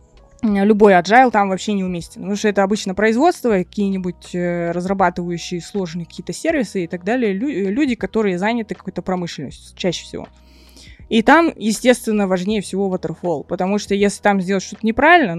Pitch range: 170-225 Hz